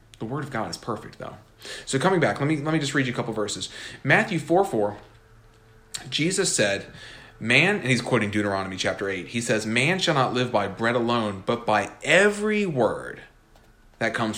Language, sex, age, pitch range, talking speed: English, male, 30-49, 110-140 Hz, 190 wpm